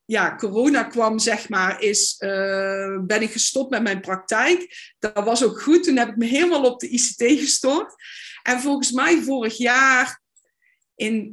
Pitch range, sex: 220-265 Hz, female